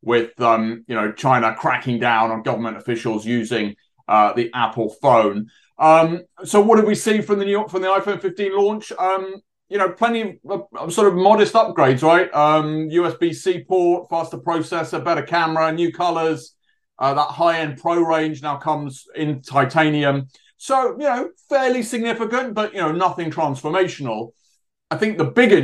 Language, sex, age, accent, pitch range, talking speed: English, male, 30-49, British, 120-180 Hz, 170 wpm